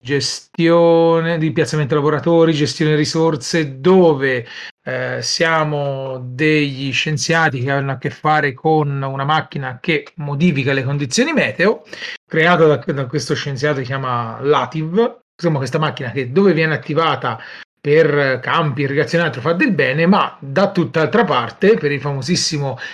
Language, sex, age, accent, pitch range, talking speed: Italian, male, 40-59, native, 140-170 Hz, 140 wpm